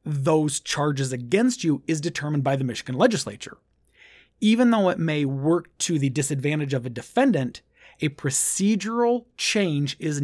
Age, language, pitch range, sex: 30-49, English, 145-195 Hz, male